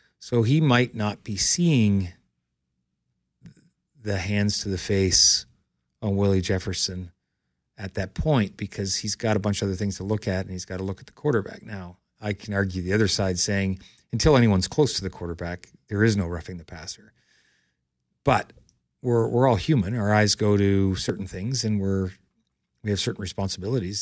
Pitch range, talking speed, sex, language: 95-115 Hz, 185 wpm, male, English